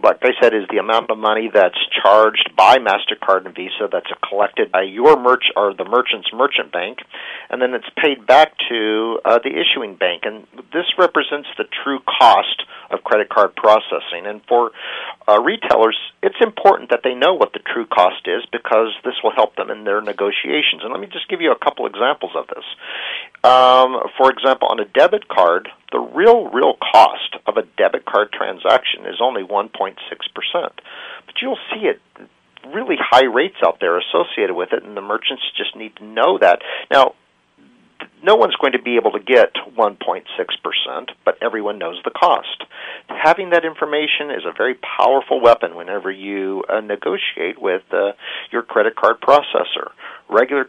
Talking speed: 180 wpm